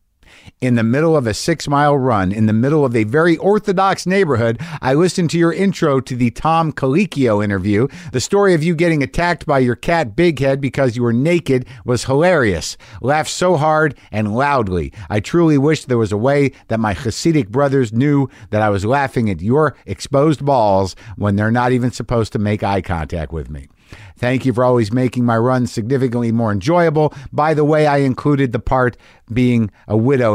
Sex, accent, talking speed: male, American, 195 wpm